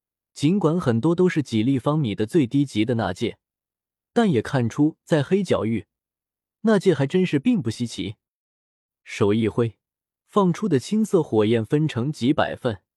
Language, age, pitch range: Chinese, 20-39, 115-155 Hz